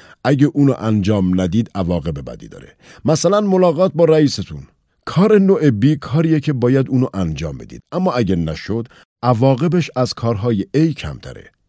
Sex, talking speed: male, 150 wpm